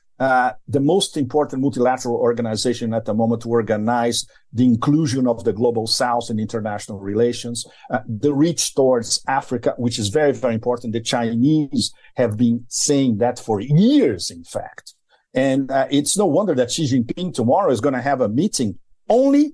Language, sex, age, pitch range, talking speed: English, male, 50-69, 125-205 Hz, 175 wpm